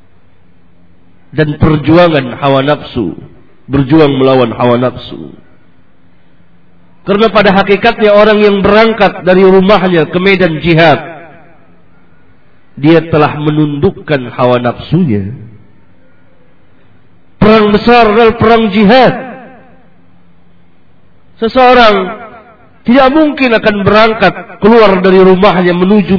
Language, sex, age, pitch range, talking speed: Swahili, male, 50-69, 120-205 Hz, 85 wpm